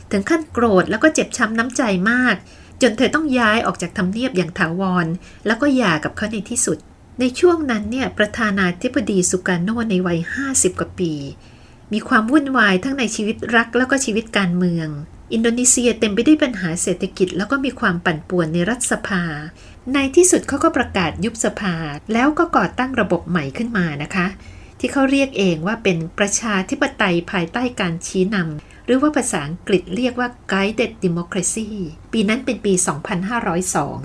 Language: Thai